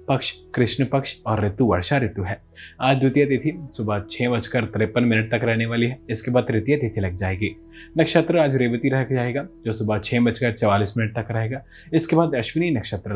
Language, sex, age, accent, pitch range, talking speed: Hindi, male, 20-39, native, 110-135 Hz, 200 wpm